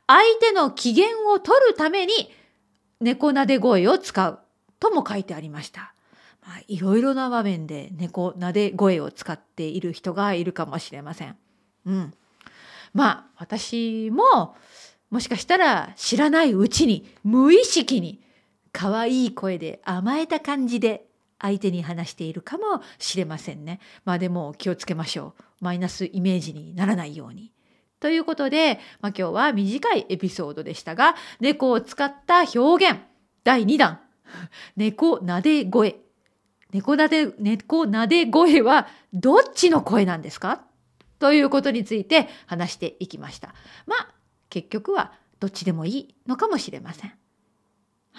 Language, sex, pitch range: Japanese, female, 180-295 Hz